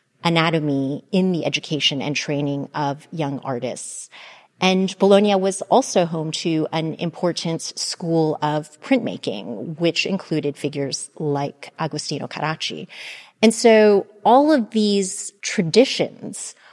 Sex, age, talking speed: female, 30-49, 115 wpm